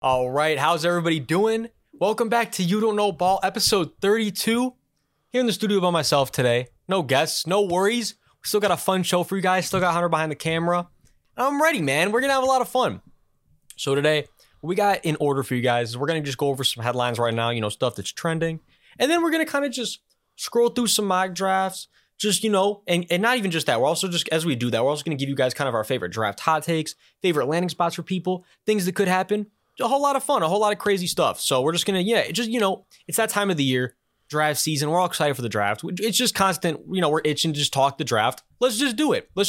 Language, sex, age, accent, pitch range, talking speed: English, male, 20-39, American, 140-210 Hz, 265 wpm